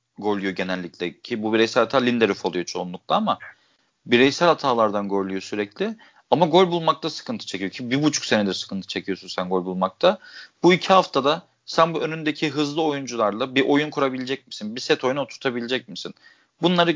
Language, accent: Turkish, native